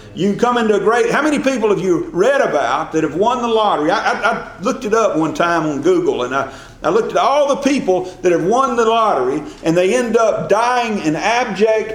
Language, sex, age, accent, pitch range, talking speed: English, male, 40-59, American, 165-230 Hz, 235 wpm